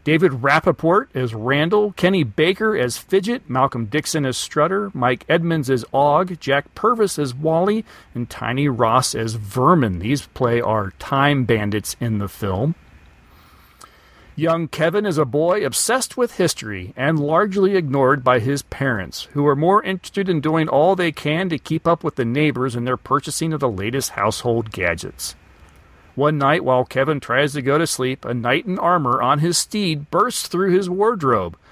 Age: 40-59